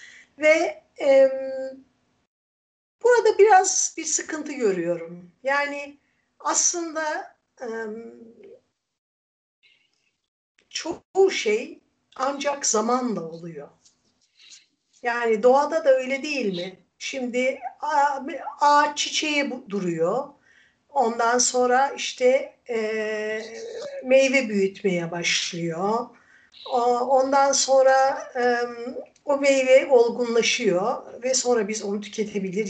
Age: 60-79